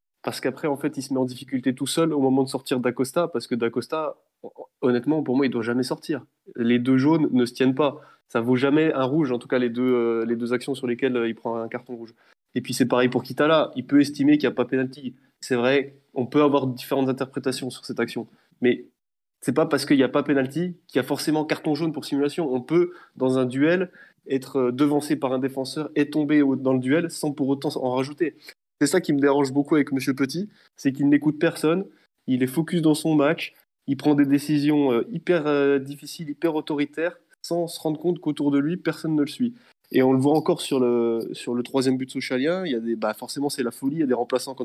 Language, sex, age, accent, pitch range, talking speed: French, male, 20-39, French, 130-155 Hz, 245 wpm